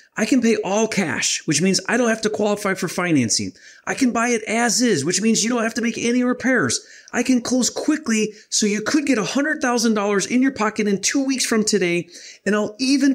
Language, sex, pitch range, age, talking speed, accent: English, male, 145-225 Hz, 30-49, 225 wpm, American